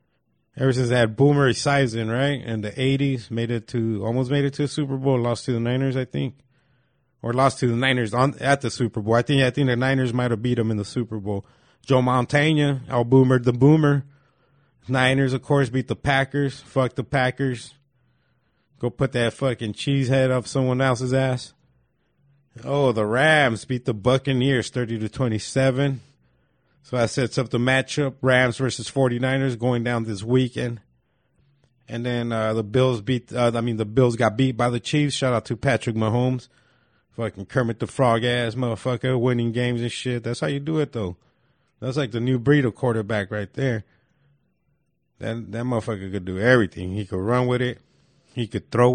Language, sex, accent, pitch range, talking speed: English, male, American, 115-135 Hz, 195 wpm